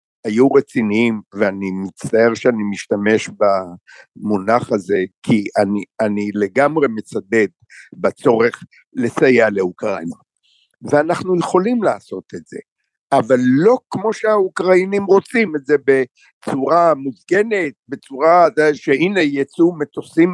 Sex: male